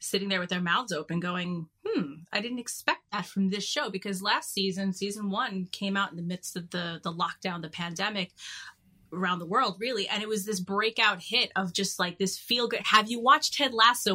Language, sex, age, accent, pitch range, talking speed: English, female, 30-49, American, 185-220 Hz, 220 wpm